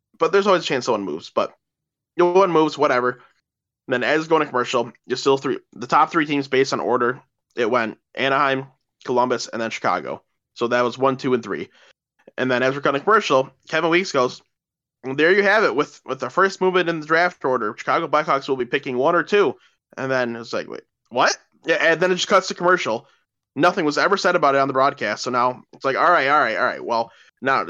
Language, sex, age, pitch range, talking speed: English, male, 20-39, 120-160 Hz, 235 wpm